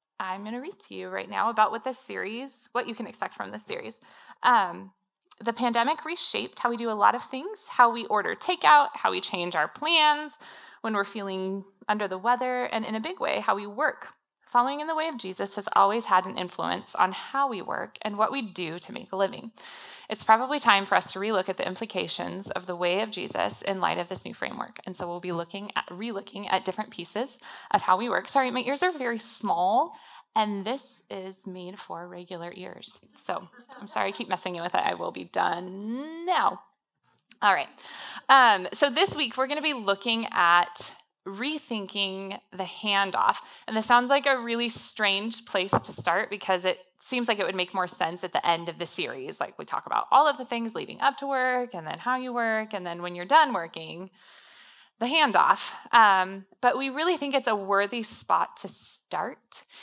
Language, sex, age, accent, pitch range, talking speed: English, female, 20-39, American, 190-260 Hz, 215 wpm